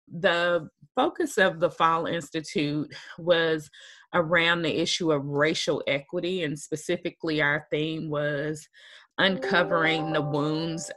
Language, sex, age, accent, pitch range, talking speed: English, female, 30-49, American, 140-160 Hz, 115 wpm